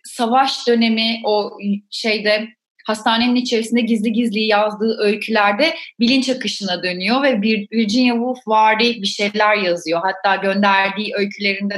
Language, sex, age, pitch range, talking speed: Turkish, female, 30-49, 195-240 Hz, 120 wpm